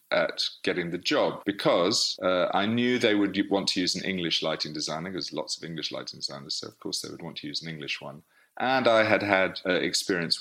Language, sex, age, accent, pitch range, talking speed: English, male, 30-49, British, 85-110 Hz, 230 wpm